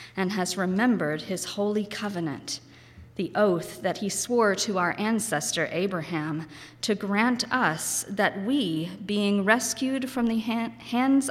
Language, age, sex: English, 40-59, female